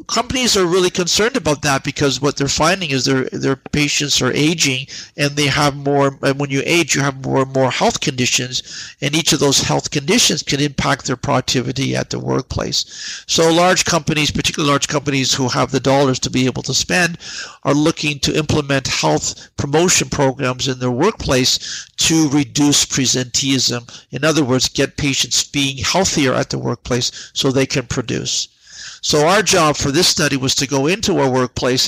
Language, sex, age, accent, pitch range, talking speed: English, male, 50-69, American, 130-150 Hz, 185 wpm